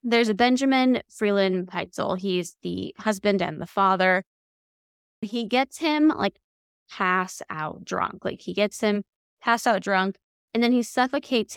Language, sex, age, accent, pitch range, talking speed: English, female, 20-39, American, 190-255 Hz, 150 wpm